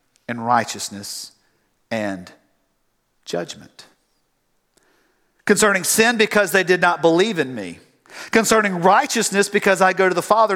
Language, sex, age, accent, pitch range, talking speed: English, male, 40-59, American, 170-250 Hz, 120 wpm